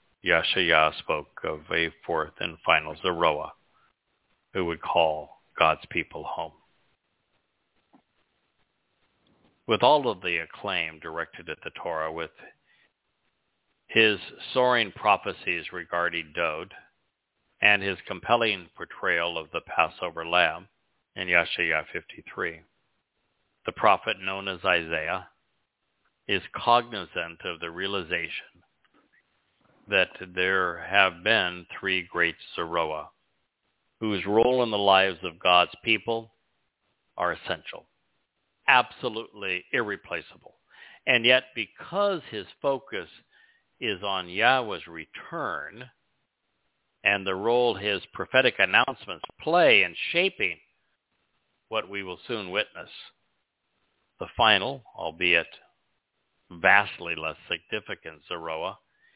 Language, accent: English, American